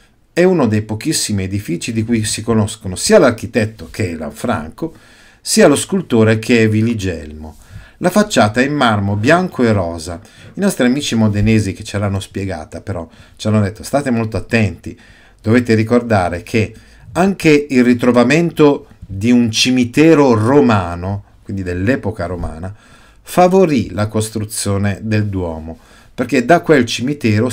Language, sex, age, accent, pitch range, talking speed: Italian, male, 50-69, native, 95-120 Hz, 140 wpm